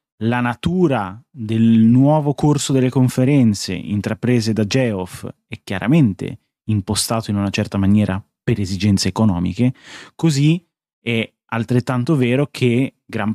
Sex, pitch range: male, 110-135 Hz